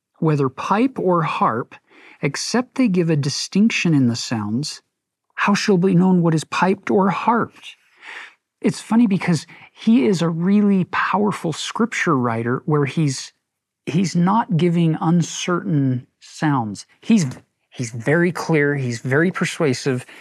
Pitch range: 140-185 Hz